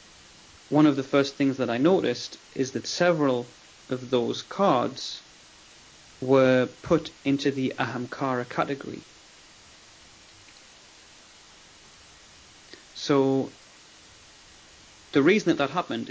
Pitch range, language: 120-140 Hz, English